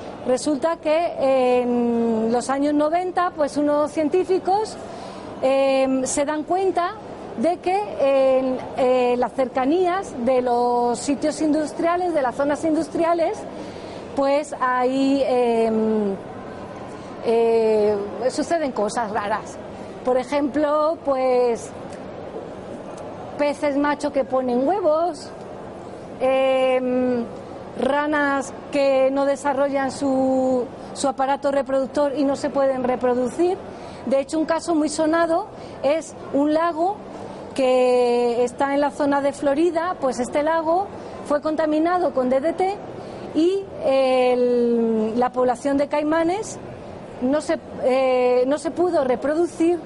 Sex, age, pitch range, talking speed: female, 40-59, 255-310 Hz, 105 wpm